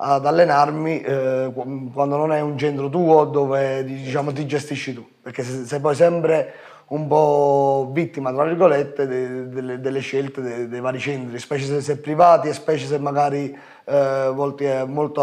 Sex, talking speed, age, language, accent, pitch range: male, 165 wpm, 30-49, Italian, native, 135-155 Hz